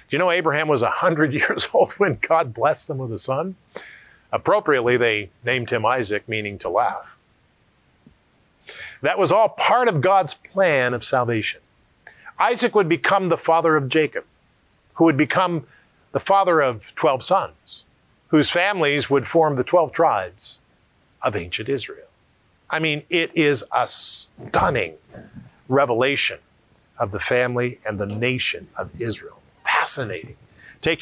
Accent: American